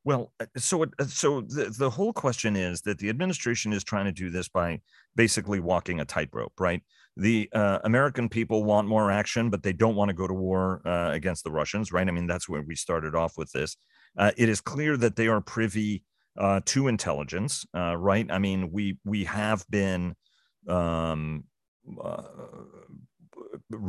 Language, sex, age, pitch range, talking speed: English, male, 40-59, 90-110 Hz, 180 wpm